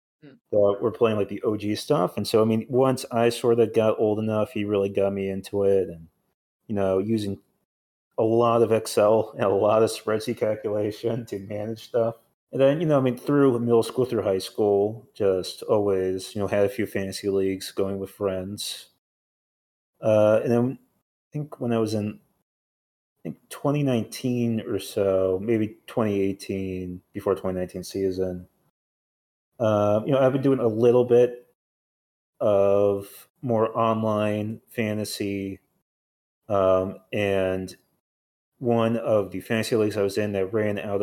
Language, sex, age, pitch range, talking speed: English, male, 30-49, 100-115 Hz, 160 wpm